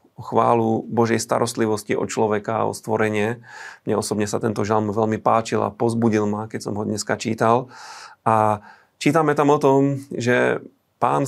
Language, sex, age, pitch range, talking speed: Slovak, male, 40-59, 110-120 Hz, 160 wpm